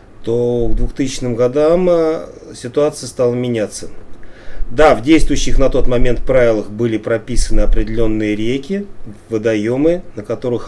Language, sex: Russian, male